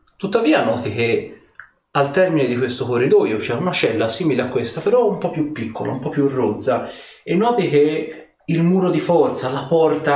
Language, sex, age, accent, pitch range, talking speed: Italian, male, 30-49, native, 125-160 Hz, 195 wpm